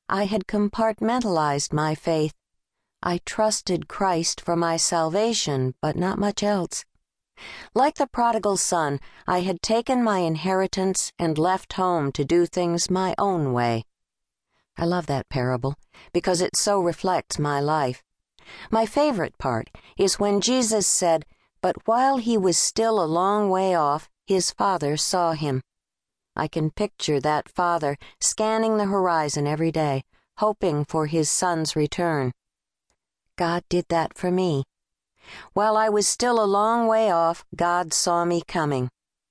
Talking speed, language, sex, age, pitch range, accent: 145 wpm, English, female, 50-69, 150-200 Hz, American